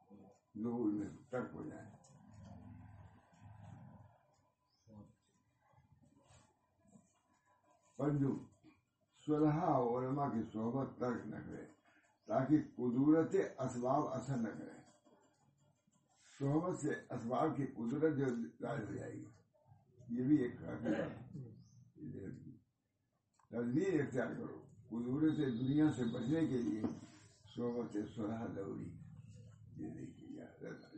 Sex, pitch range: male, 110-140 Hz